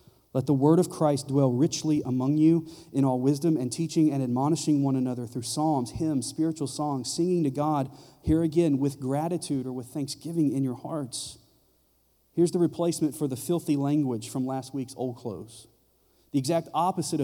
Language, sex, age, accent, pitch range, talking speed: English, male, 40-59, American, 130-155 Hz, 180 wpm